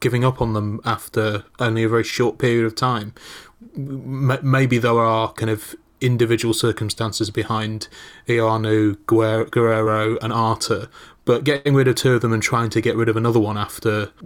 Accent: British